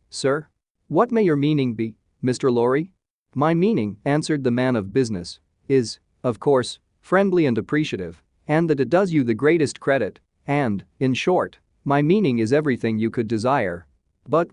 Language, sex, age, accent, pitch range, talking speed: English, male, 40-59, American, 105-150 Hz, 165 wpm